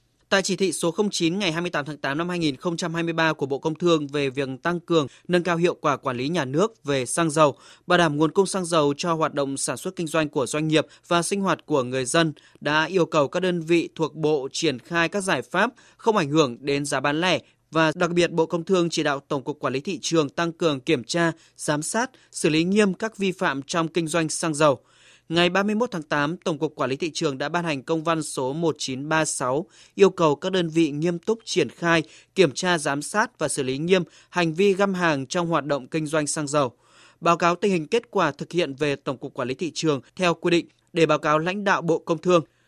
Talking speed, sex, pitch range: 245 wpm, male, 150-175 Hz